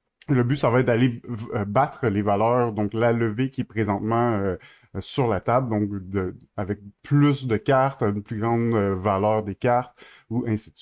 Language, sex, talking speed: French, male, 200 wpm